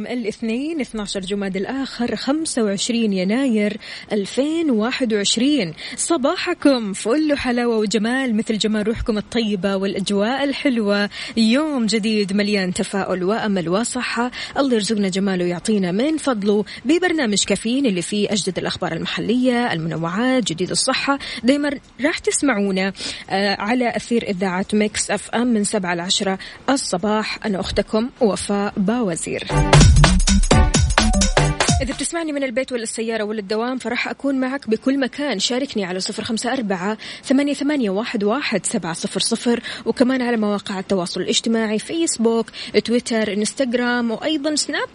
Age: 20-39